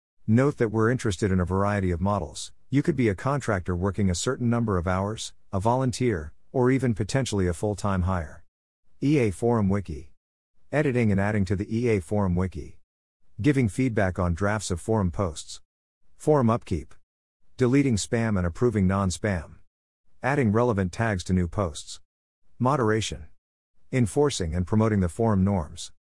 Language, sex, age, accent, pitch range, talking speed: English, male, 50-69, American, 90-120 Hz, 150 wpm